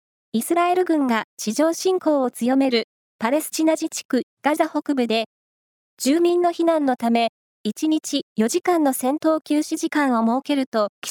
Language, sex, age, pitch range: Japanese, female, 20-39, 245-320 Hz